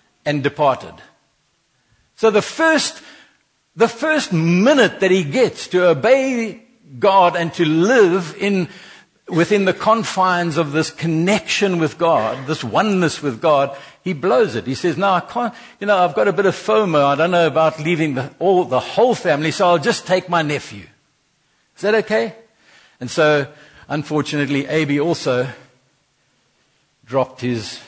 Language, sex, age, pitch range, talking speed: English, male, 60-79, 140-190 Hz, 150 wpm